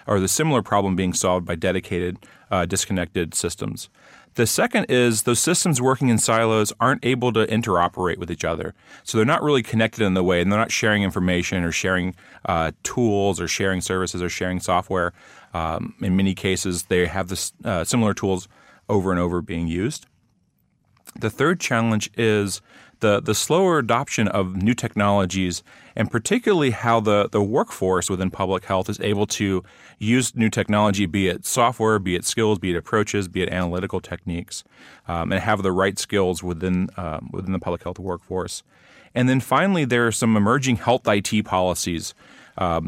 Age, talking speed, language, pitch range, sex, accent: 40-59, 175 wpm, English, 90-110 Hz, male, American